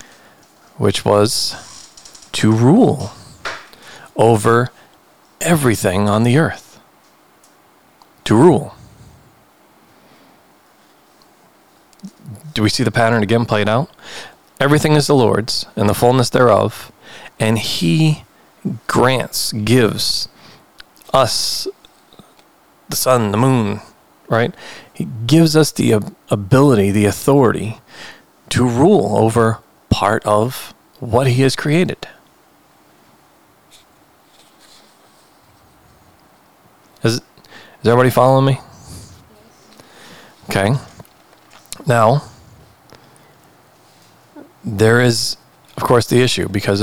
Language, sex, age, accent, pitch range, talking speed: English, male, 40-59, American, 105-130 Hz, 85 wpm